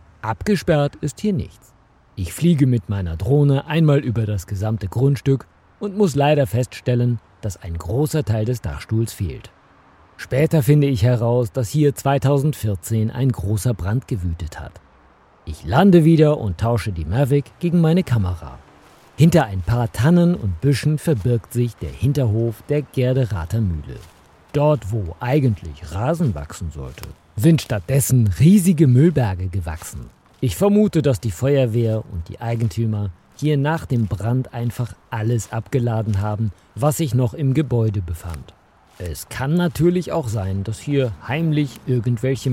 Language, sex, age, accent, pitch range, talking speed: German, male, 50-69, German, 95-140 Hz, 145 wpm